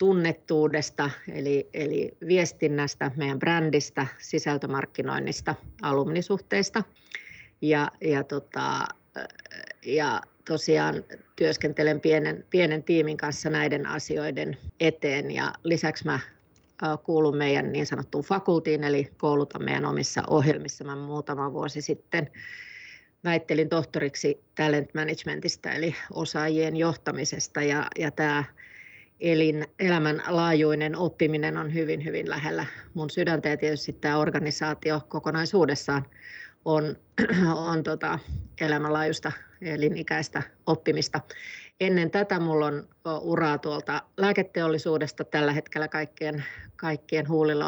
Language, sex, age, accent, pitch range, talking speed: Finnish, female, 30-49, native, 150-165 Hz, 100 wpm